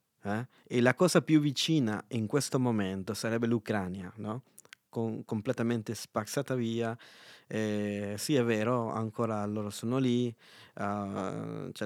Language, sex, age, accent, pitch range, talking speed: Italian, male, 20-39, native, 105-125 Hz, 130 wpm